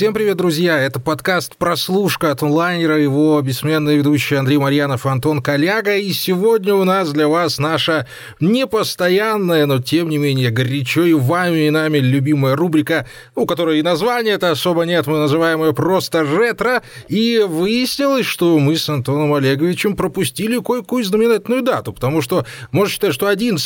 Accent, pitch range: native, 145-200 Hz